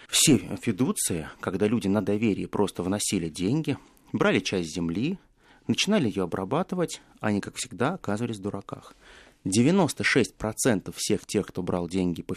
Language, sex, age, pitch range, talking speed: Russian, male, 30-49, 105-155 Hz, 135 wpm